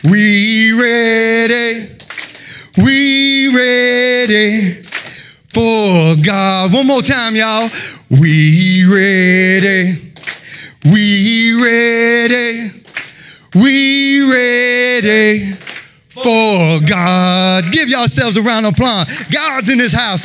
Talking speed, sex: 85 wpm, male